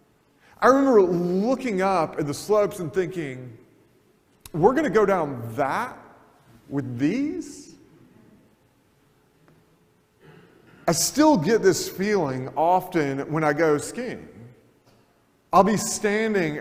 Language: English